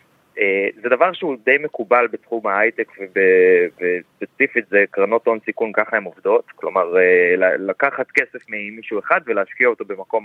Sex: male